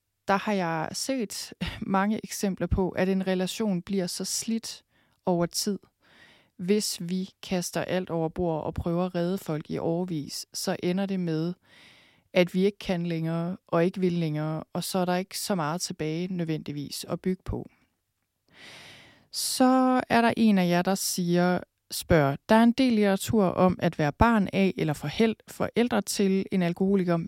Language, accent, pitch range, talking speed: Danish, native, 165-200 Hz, 170 wpm